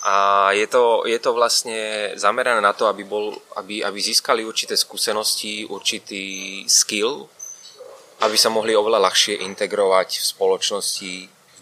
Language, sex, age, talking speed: Czech, male, 20-39, 140 wpm